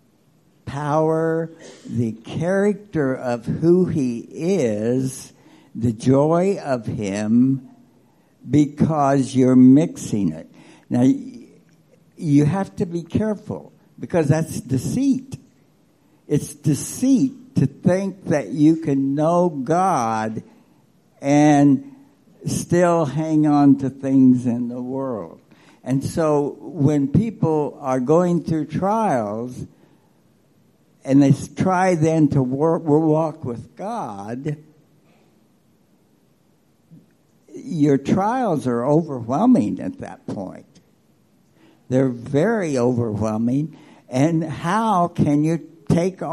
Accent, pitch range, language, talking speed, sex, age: American, 130-170 Hz, English, 95 wpm, male, 60-79